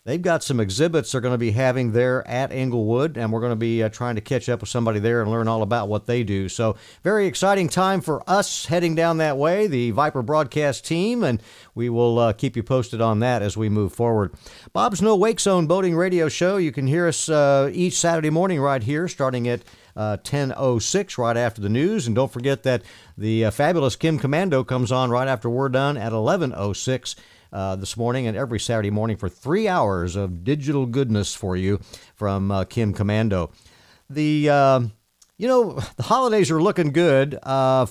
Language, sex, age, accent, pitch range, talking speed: English, male, 50-69, American, 115-165 Hz, 205 wpm